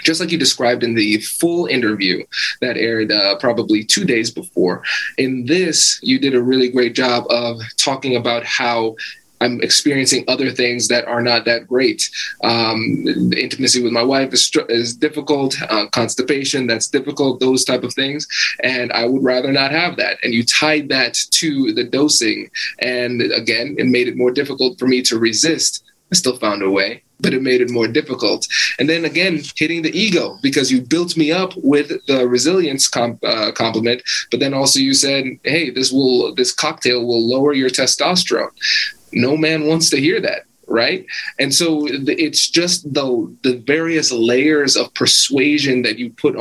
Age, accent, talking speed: 20-39, American, 180 wpm